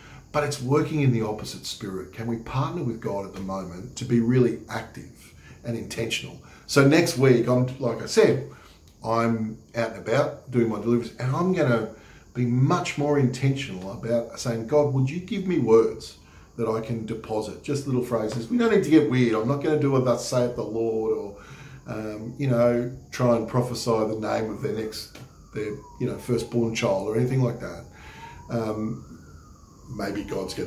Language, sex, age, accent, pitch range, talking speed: English, male, 40-59, Australian, 110-135 Hz, 195 wpm